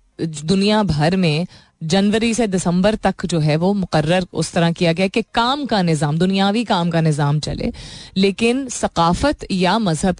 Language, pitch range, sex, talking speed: Hindi, 170-215 Hz, female, 170 wpm